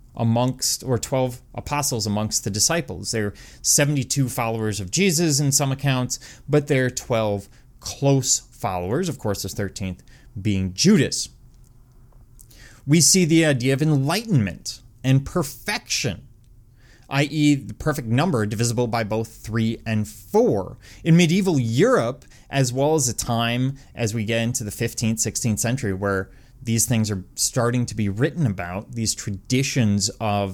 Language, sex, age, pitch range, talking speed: English, male, 30-49, 110-140 Hz, 145 wpm